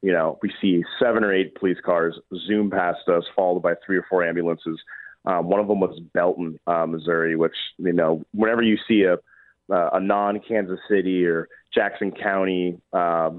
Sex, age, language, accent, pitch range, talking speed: male, 30-49, English, American, 85-100 Hz, 180 wpm